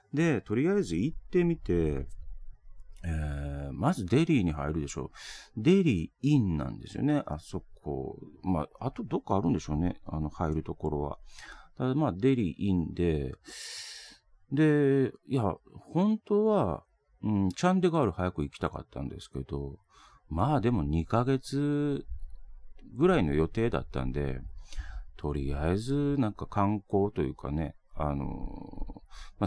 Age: 40-59